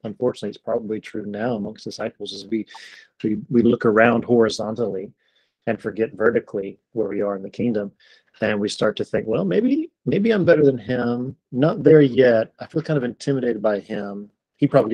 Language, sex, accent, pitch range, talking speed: English, male, American, 110-130 Hz, 190 wpm